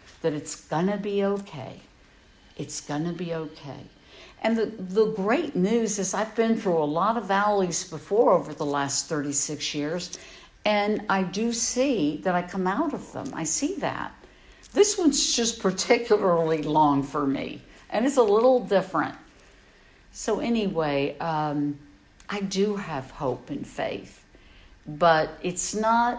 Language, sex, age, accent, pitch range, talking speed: English, female, 60-79, American, 150-215 Hz, 150 wpm